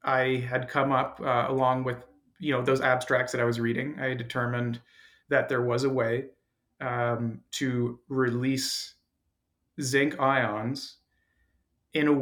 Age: 30-49